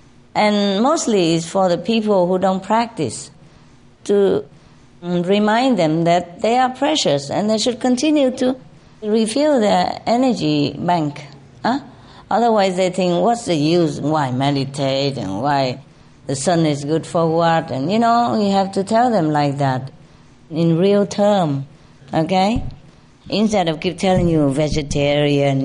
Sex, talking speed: female, 145 wpm